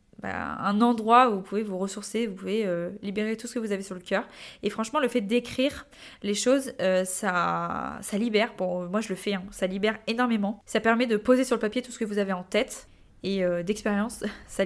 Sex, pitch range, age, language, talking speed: female, 190-235 Hz, 20-39, French, 240 wpm